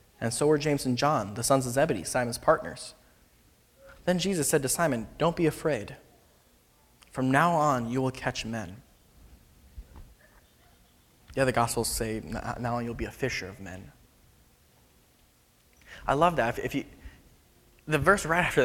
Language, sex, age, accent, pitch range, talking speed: English, male, 20-39, American, 105-135 Hz, 155 wpm